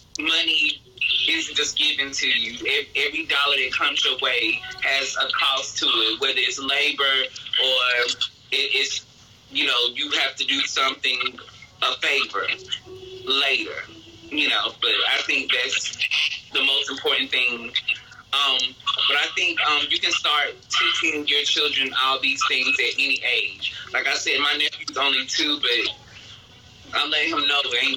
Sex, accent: male, American